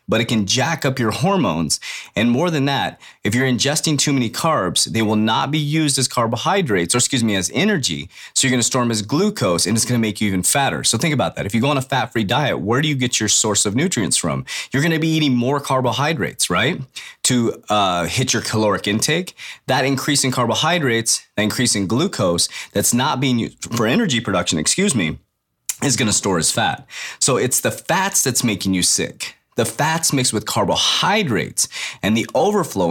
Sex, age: male, 30-49